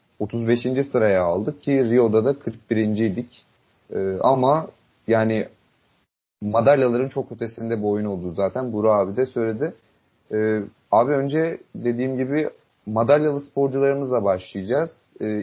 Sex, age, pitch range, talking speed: male, 30-49, 105-135 Hz, 120 wpm